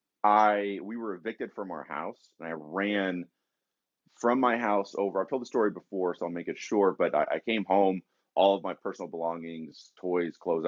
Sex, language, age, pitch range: male, English, 30-49, 85-105 Hz